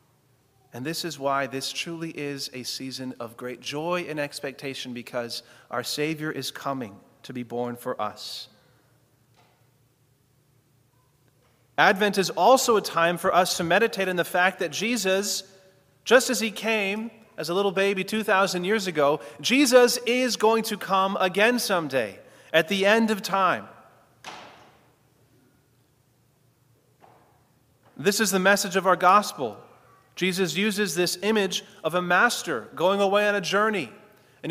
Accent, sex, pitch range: American, male, 130-200 Hz